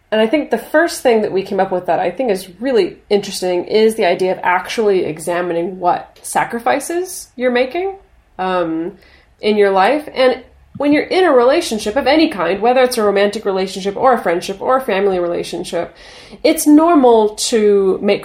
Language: English